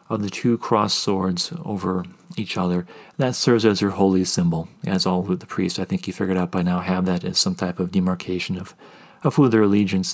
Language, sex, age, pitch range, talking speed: English, male, 40-59, 95-130 Hz, 225 wpm